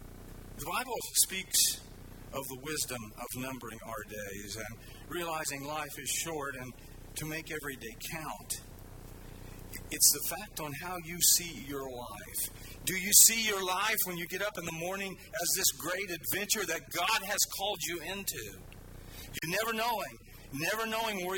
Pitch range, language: 115-175 Hz, English